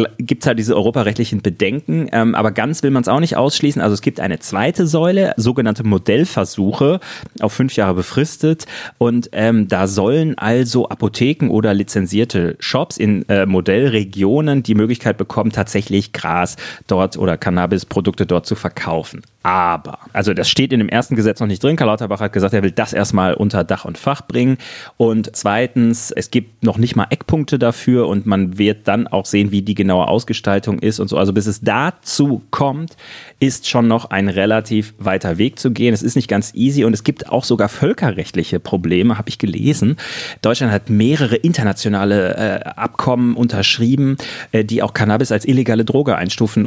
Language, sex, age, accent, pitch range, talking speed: German, male, 30-49, German, 100-130 Hz, 180 wpm